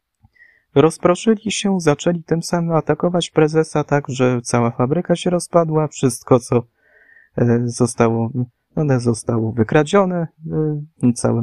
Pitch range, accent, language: 115-155 Hz, native, Polish